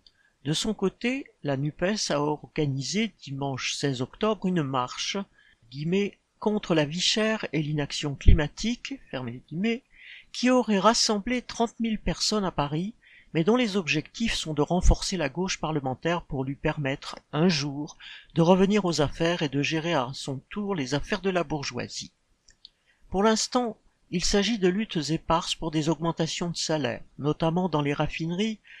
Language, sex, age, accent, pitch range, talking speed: French, male, 50-69, French, 145-200 Hz, 155 wpm